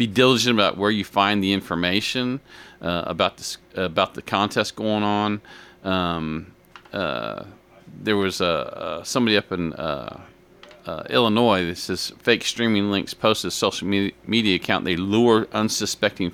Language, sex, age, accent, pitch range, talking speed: English, male, 40-59, American, 90-105 Hz, 145 wpm